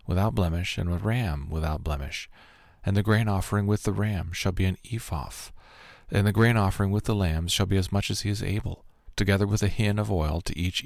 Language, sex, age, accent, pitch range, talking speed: English, male, 40-59, American, 90-110 Hz, 225 wpm